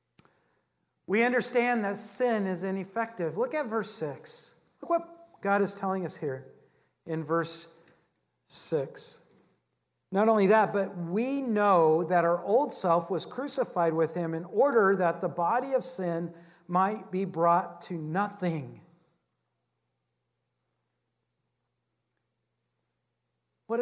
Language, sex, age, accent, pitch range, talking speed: English, male, 50-69, American, 180-250 Hz, 120 wpm